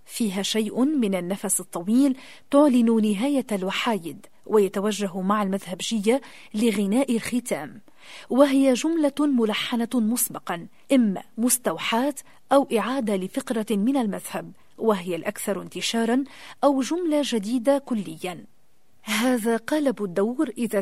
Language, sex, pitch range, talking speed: English, female, 205-260 Hz, 100 wpm